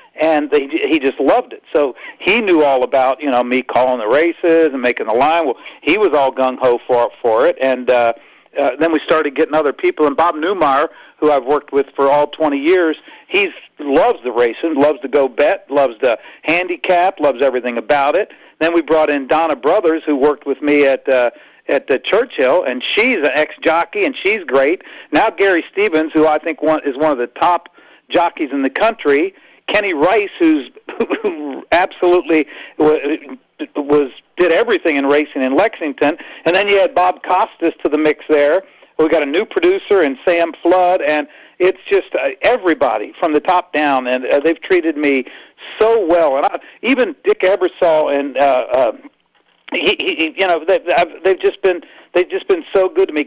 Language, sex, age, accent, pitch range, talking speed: English, male, 50-69, American, 145-195 Hz, 195 wpm